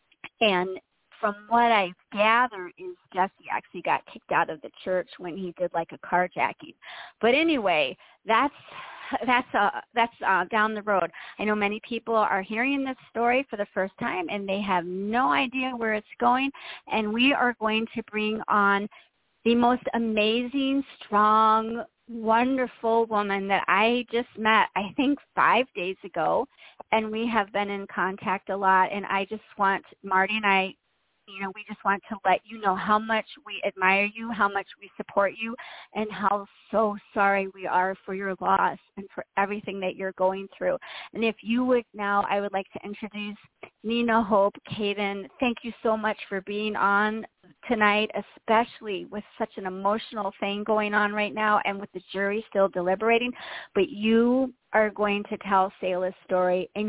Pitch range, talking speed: 195-230 Hz, 180 wpm